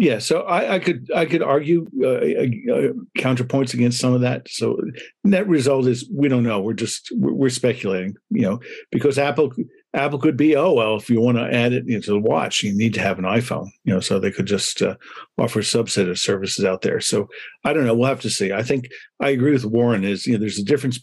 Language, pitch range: English, 105-130 Hz